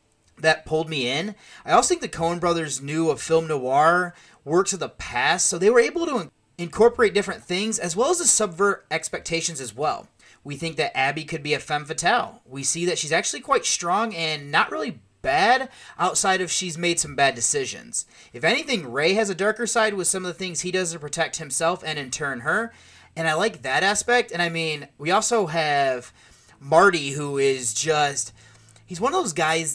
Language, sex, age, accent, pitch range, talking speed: English, male, 30-49, American, 135-185 Hz, 205 wpm